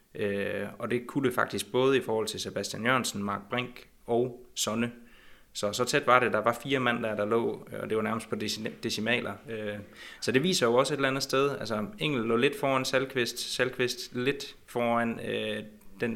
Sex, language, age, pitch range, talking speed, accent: male, Danish, 20-39, 105-125 Hz, 210 wpm, native